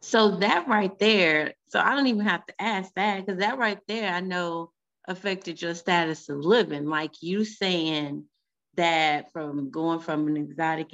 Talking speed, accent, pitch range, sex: 175 wpm, American, 165-235 Hz, female